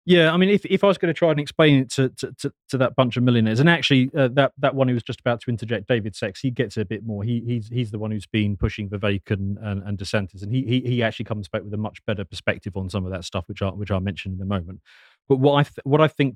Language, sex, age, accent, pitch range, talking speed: English, male, 30-49, British, 105-135 Hz, 320 wpm